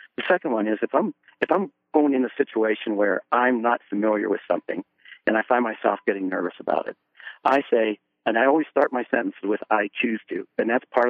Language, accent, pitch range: English, American, 105-130 Hz